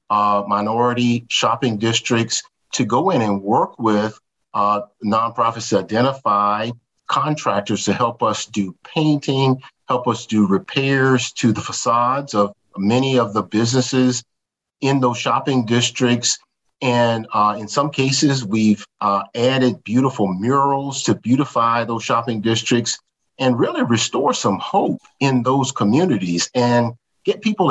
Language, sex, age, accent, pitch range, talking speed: English, male, 50-69, American, 110-130 Hz, 135 wpm